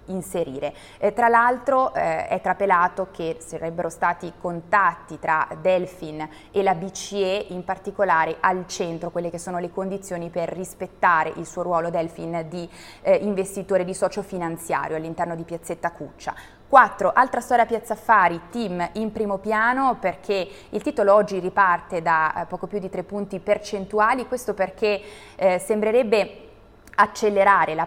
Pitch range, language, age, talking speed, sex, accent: 170-205 Hz, Italian, 20-39, 150 wpm, female, native